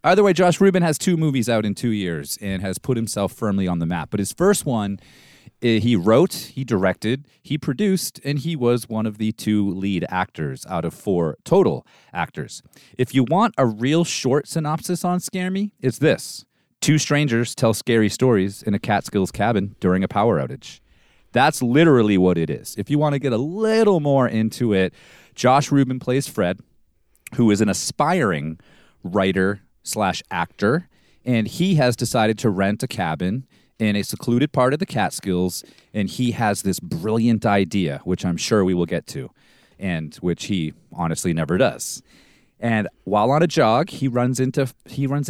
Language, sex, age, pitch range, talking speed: English, male, 30-49, 100-140 Hz, 185 wpm